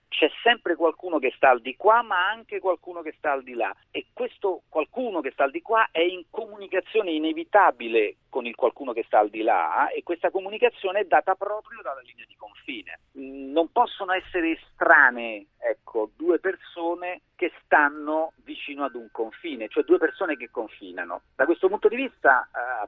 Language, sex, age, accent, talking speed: Italian, male, 40-59, native, 185 wpm